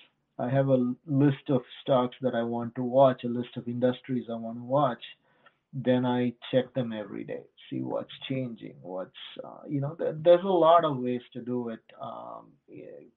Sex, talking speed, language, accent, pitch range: male, 190 wpm, English, Indian, 120-140 Hz